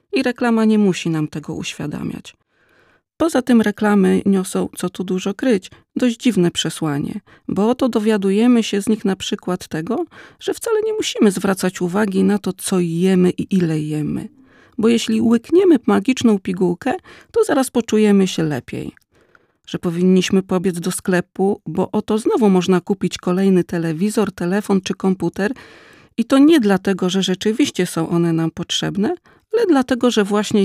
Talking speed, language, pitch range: 155 wpm, Polish, 180-225 Hz